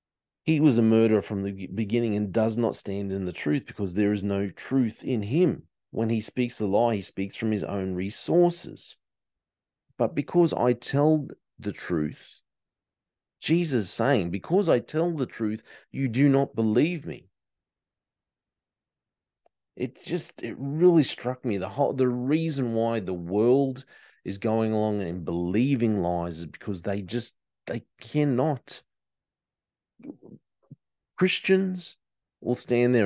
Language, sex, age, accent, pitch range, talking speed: English, male, 30-49, Australian, 100-130 Hz, 145 wpm